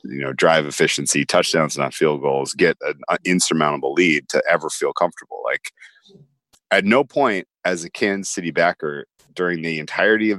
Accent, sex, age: American, male, 30-49